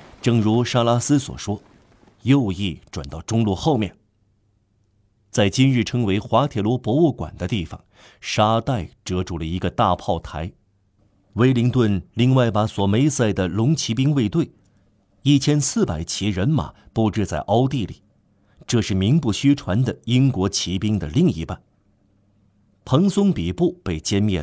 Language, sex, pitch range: Chinese, male, 95-120 Hz